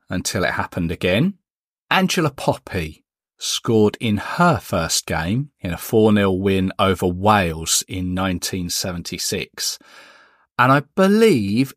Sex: male